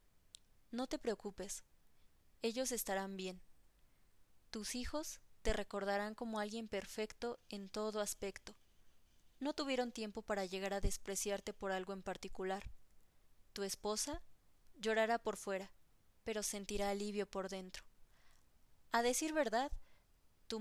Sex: female